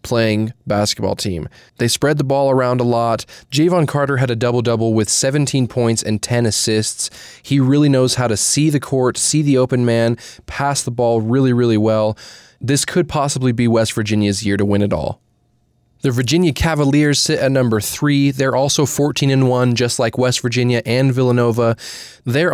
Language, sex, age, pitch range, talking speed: English, male, 20-39, 115-140 Hz, 185 wpm